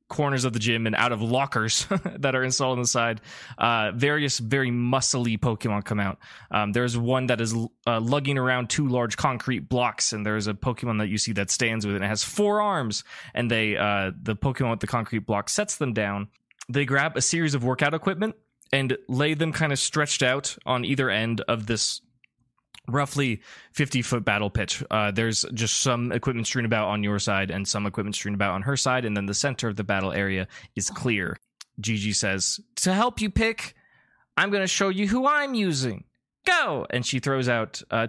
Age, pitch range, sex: 20-39, 110-140 Hz, male